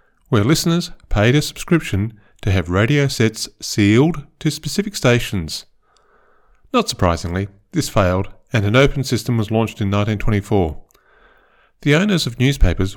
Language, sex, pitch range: English, male, 95-145 Hz